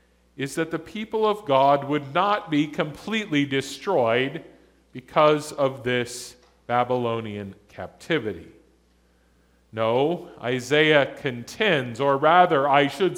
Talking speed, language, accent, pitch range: 105 wpm, English, American, 125-180 Hz